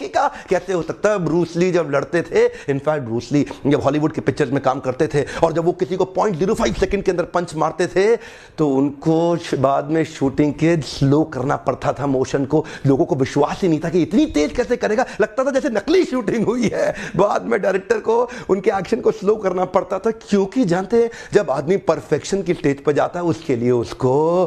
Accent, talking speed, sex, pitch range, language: native, 90 wpm, male, 140-185 Hz, Hindi